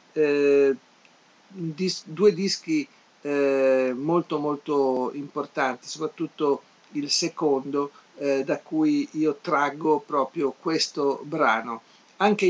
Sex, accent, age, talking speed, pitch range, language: male, native, 50-69, 95 wpm, 140-175 Hz, Italian